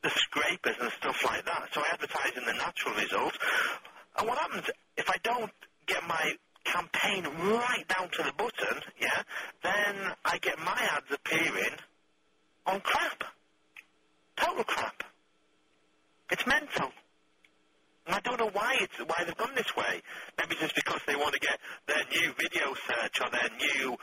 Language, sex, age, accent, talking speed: English, male, 40-59, British, 160 wpm